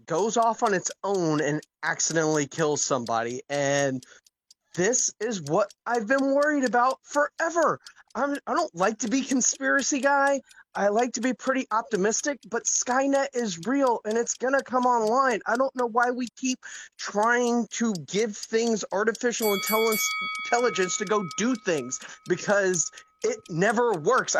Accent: American